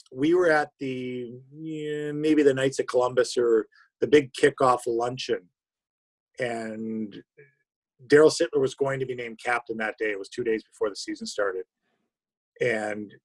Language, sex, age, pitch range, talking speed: English, male, 50-69, 120-160 Hz, 155 wpm